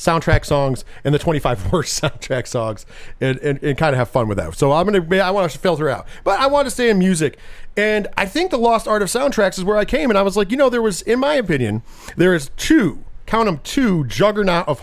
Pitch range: 135-215 Hz